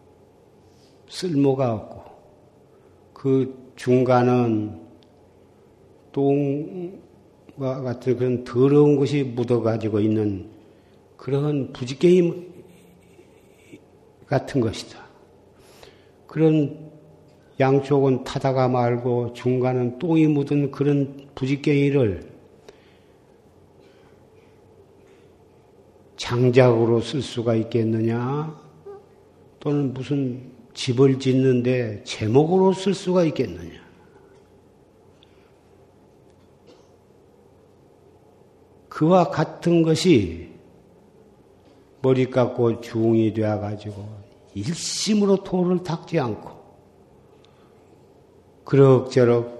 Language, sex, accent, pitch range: Korean, male, native, 115-145 Hz